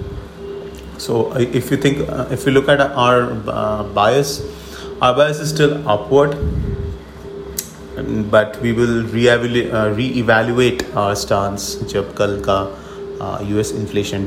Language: English